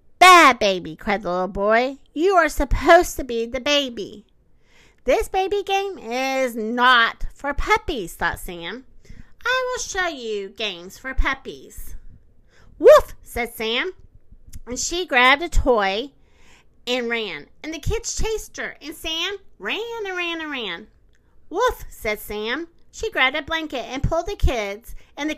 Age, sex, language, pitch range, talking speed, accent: 40-59, female, English, 220-350 Hz, 150 wpm, American